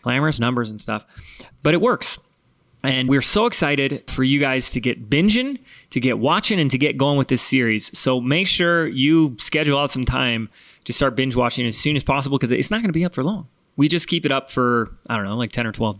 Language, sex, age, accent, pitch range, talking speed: English, male, 20-39, American, 120-150 Hz, 245 wpm